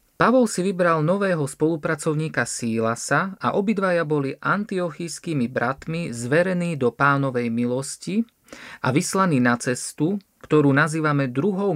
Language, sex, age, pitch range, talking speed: Slovak, male, 40-59, 130-175 Hz, 110 wpm